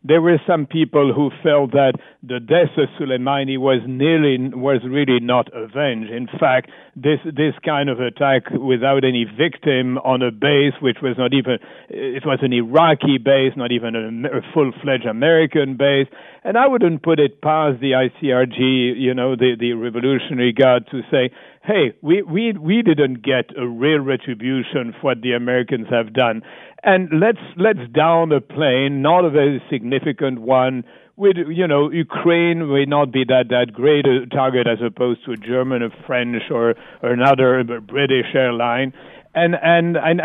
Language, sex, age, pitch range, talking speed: English, male, 60-79, 125-155 Hz, 170 wpm